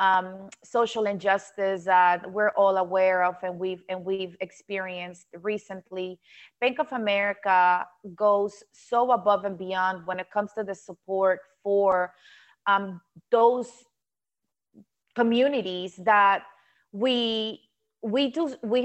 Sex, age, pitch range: female, 30-49, 190-235 Hz